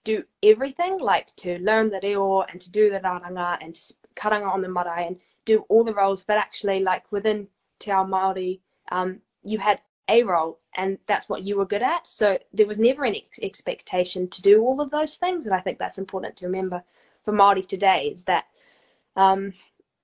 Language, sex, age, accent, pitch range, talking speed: English, female, 20-39, Australian, 180-215 Hz, 200 wpm